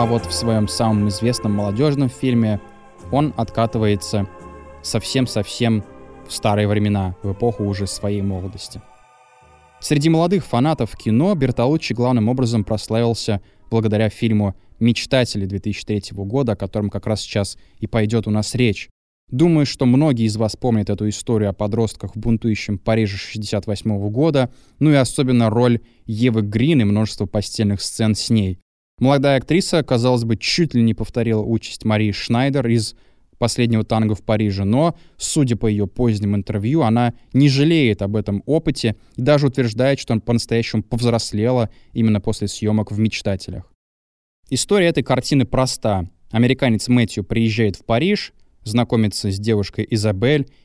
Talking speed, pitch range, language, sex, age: 145 wpm, 100-125 Hz, Russian, male, 20-39